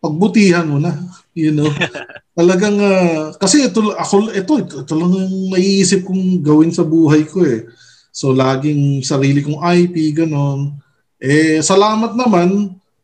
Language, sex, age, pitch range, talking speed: Filipino, male, 20-39, 150-190 Hz, 130 wpm